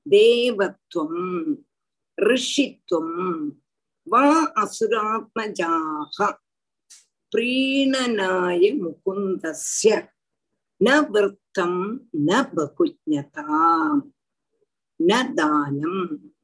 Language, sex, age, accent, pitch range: Tamil, female, 50-69, native, 190-300 Hz